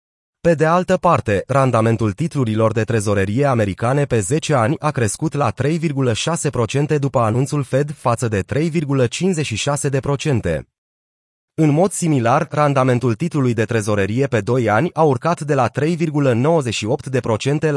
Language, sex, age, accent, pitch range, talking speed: Romanian, male, 30-49, native, 120-150 Hz, 125 wpm